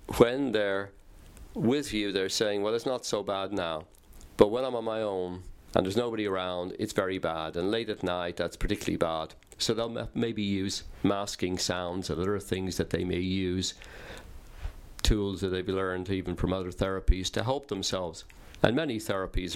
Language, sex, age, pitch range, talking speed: English, male, 50-69, 90-105 Hz, 180 wpm